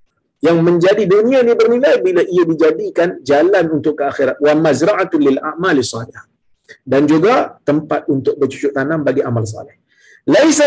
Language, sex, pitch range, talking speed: Malayalam, male, 115-160 Hz, 145 wpm